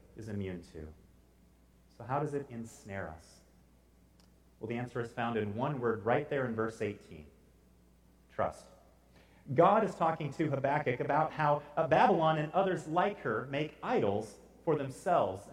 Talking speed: 150 wpm